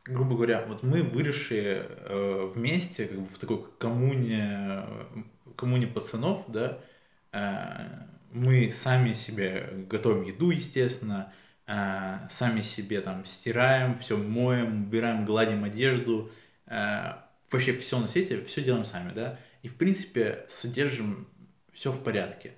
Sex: male